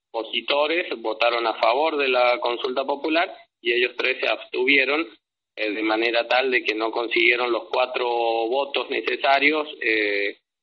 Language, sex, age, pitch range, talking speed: Spanish, male, 20-39, 115-160 Hz, 145 wpm